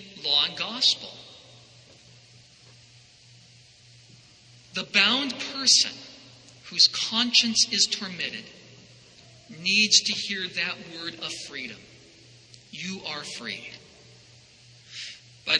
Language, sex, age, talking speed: English, male, 40-59, 80 wpm